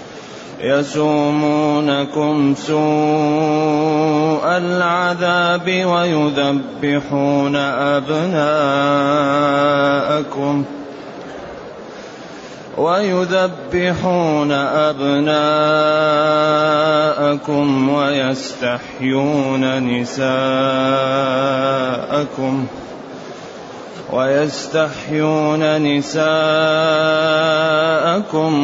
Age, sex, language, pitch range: 30-49, male, Arabic, 135-155 Hz